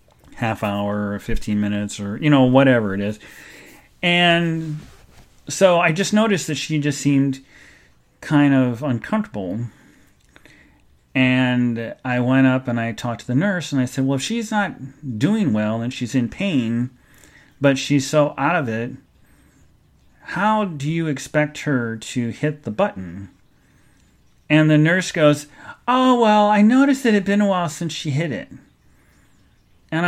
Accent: American